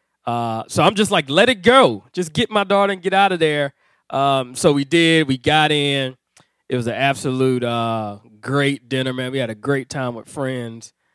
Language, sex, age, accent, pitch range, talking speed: English, male, 20-39, American, 115-150 Hz, 210 wpm